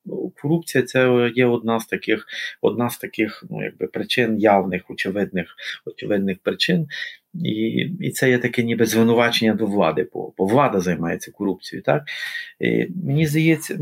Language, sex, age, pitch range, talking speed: Ukrainian, male, 40-59, 110-135 Hz, 150 wpm